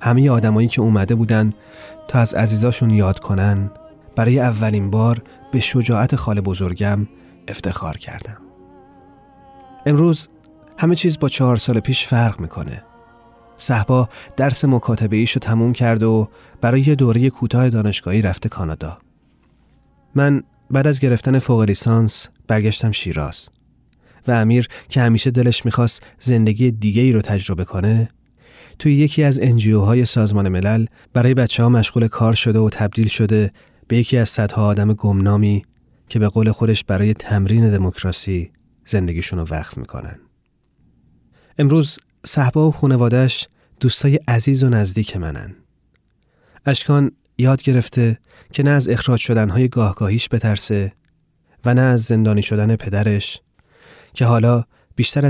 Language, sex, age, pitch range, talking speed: Persian, male, 30-49, 105-125 Hz, 130 wpm